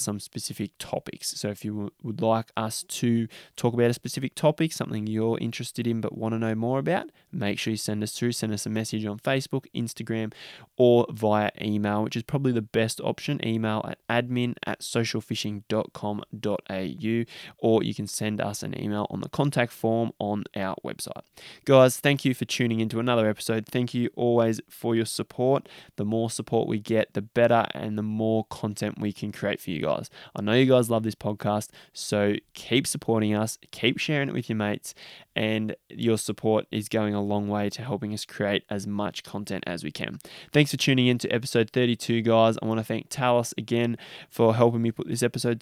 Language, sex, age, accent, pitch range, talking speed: English, male, 20-39, Australian, 105-125 Hz, 200 wpm